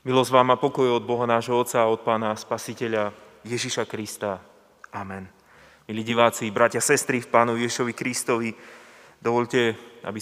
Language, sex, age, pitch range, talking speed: Slovak, male, 20-39, 115-140 Hz, 155 wpm